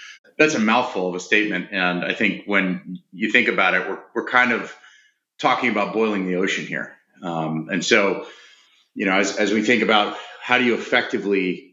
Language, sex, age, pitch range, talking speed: English, male, 30-49, 90-105 Hz, 195 wpm